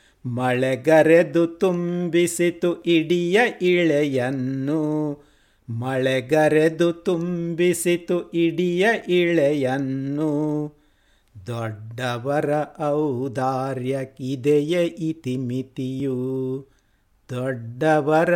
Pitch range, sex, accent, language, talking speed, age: 130-170 Hz, male, native, Kannada, 40 wpm, 50-69